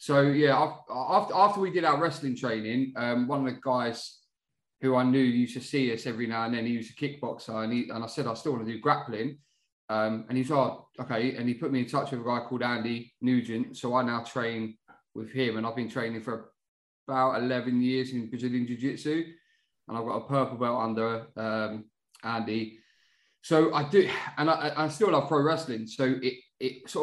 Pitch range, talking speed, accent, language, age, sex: 120-150 Hz, 210 wpm, British, English, 20-39, male